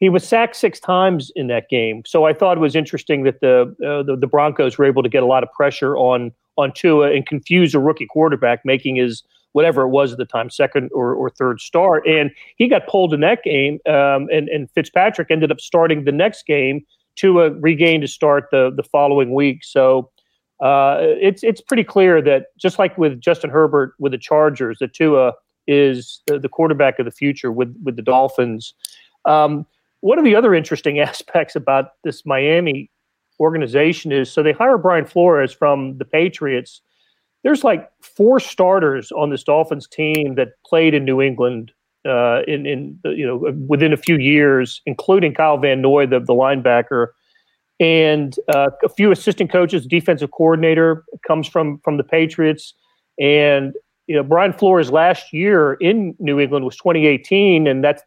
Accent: American